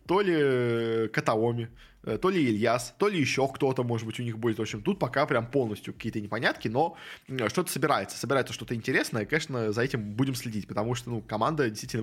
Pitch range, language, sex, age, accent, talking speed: 115-155 Hz, Russian, male, 20-39, native, 195 wpm